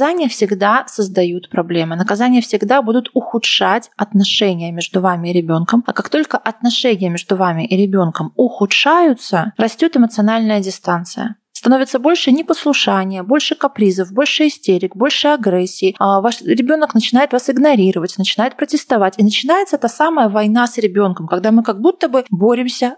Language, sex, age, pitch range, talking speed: Russian, female, 20-39, 190-255 Hz, 145 wpm